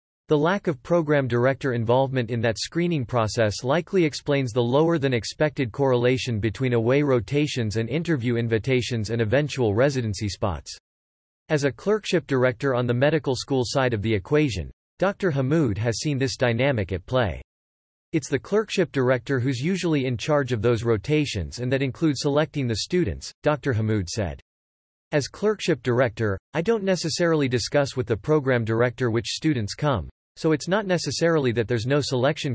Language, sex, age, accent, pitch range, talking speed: English, male, 40-59, American, 115-150 Hz, 160 wpm